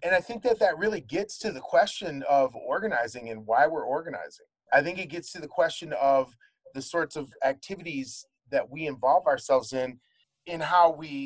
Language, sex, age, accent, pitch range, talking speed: English, male, 30-49, American, 135-200 Hz, 190 wpm